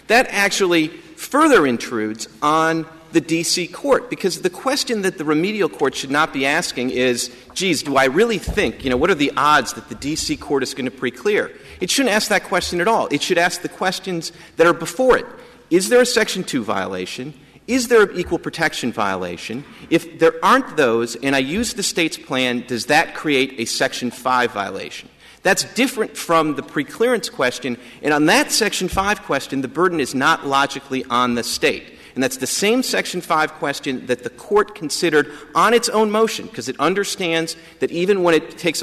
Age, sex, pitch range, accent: 40-59, male, 135-190 Hz, American